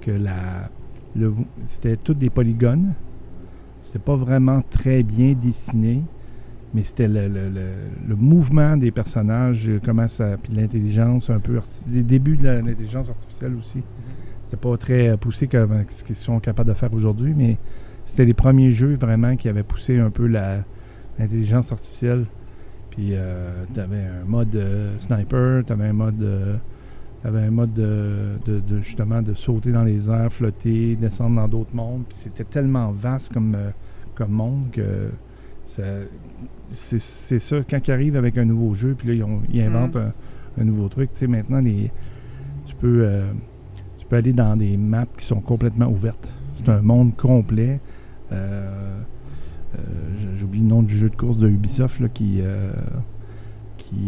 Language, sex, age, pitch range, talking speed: French, male, 50-69, 105-125 Hz, 170 wpm